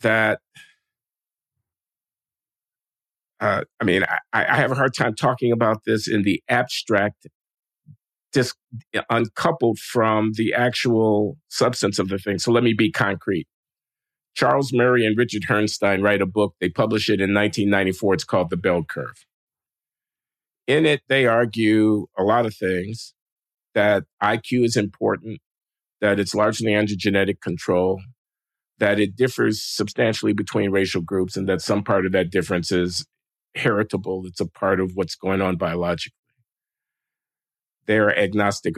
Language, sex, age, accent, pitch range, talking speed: English, male, 50-69, American, 95-120 Hz, 140 wpm